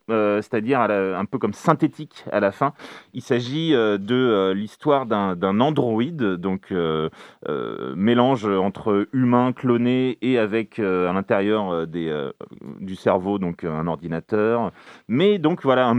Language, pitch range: French, 105-140 Hz